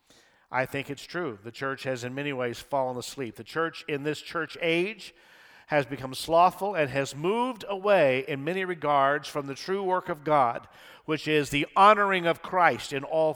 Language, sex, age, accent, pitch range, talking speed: English, male, 50-69, American, 150-200 Hz, 190 wpm